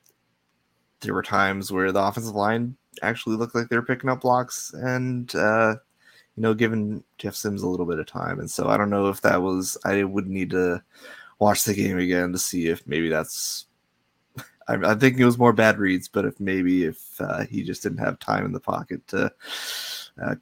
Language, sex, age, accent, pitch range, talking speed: English, male, 20-39, American, 80-105 Hz, 210 wpm